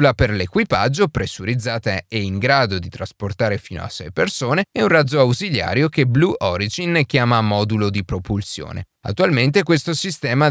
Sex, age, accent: male, 30-49, native